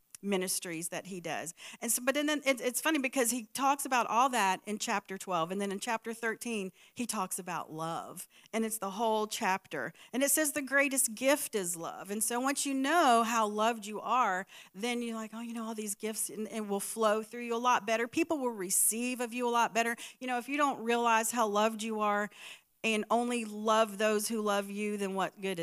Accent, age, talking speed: American, 40-59, 225 wpm